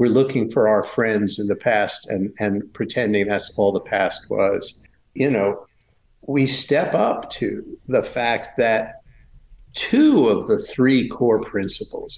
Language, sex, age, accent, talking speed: English, male, 50-69, American, 155 wpm